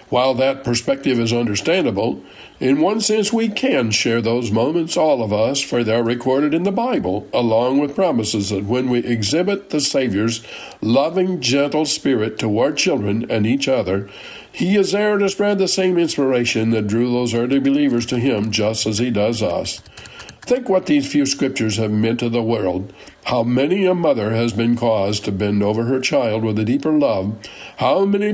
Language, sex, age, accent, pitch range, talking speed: English, male, 60-79, American, 115-155 Hz, 185 wpm